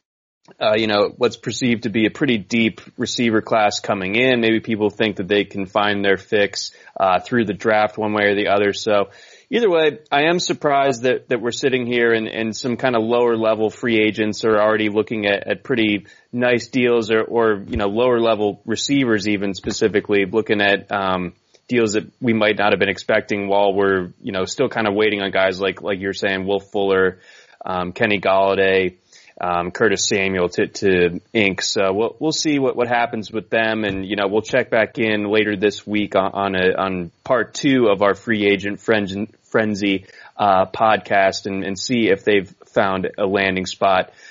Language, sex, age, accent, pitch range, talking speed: English, male, 20-39, American, 100-120 Hz, 200 wpm